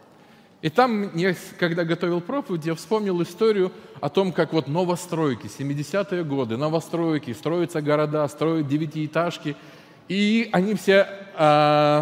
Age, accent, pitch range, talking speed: 20-39, native, 150-210 Hz, 125 wpm